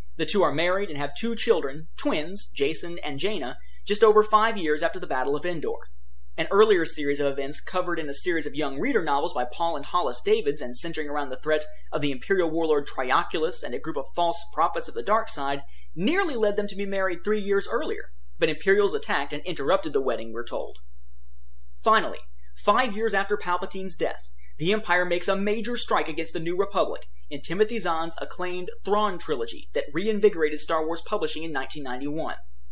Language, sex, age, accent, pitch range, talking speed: English, male, 30-49, American, 145-210 Hz, 195 wpm